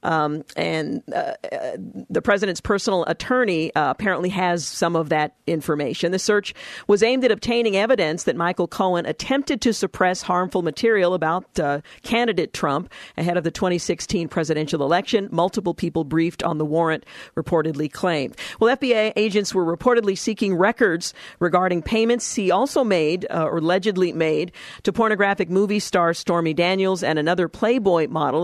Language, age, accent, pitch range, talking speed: English, 50-69, American, 165-205 Hz, 155 wpm